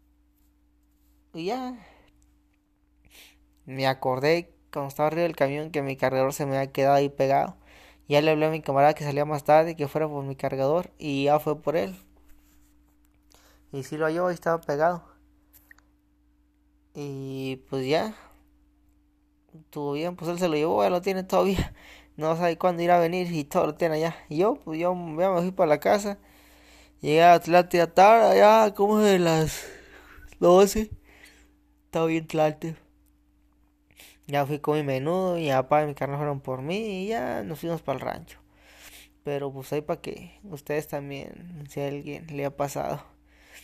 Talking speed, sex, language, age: 175 wpm, male, Spanish, 20-39